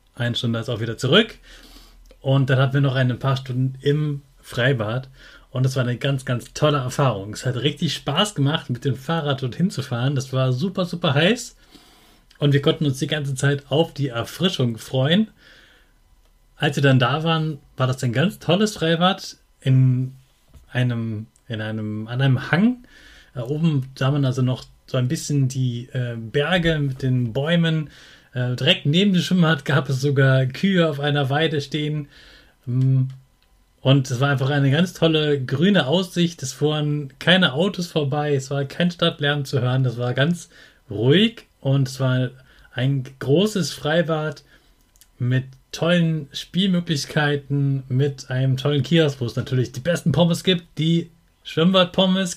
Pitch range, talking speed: 130-165 Hz, 160 wpm